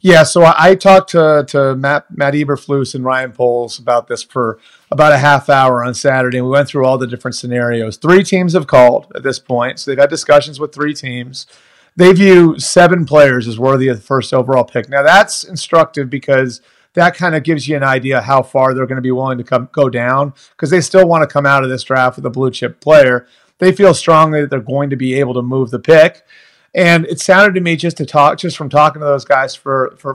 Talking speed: 235 wpm